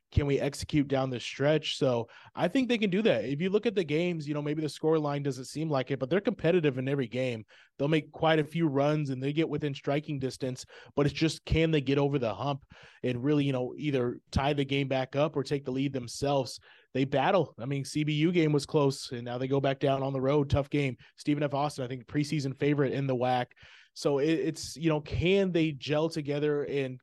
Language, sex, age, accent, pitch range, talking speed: English, male, 20-39, American, 130-150 Hz, 240 wpm